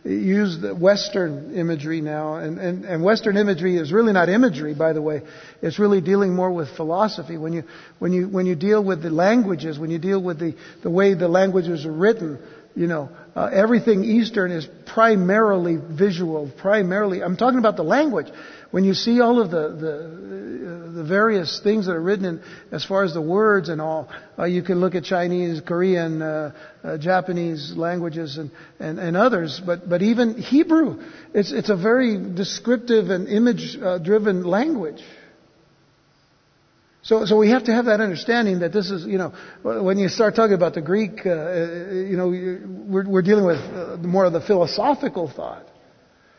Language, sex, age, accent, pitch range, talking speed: English, male, 60-79, American, 170-220 Hz, 180 wpm